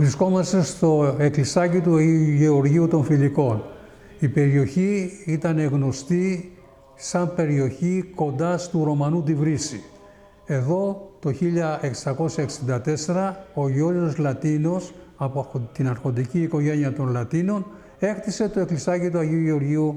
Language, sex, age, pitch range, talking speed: Greek, male, 60-79, 140-180 Hz, 110 wpm